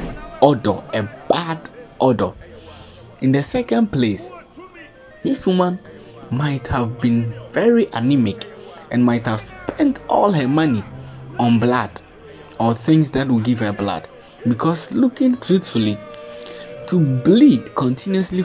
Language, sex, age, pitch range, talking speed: English, male, 20-39, 105-140 Hz, 120 wpm